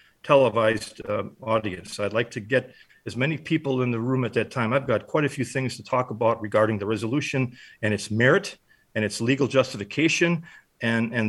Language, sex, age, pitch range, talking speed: English, male, 50-69, 105-125 Hz, 195 wpm